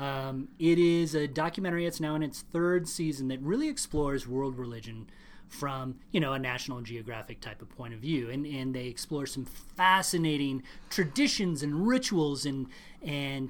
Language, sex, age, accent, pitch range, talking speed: English, male, 30-49, American, 130-185 Hz, 170 wpm